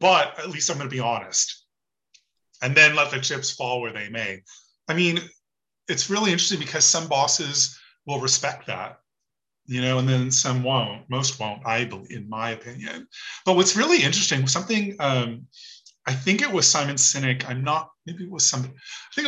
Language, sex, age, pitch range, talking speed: English, male, 30-49, 125-165 Hz, 185 wpm